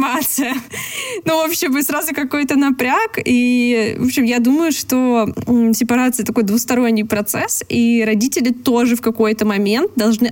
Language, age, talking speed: Russian, 20-39, 145 wpm